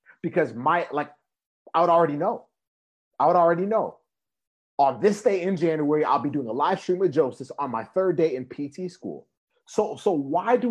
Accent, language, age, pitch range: American, English, 30-49, 125-205 Hz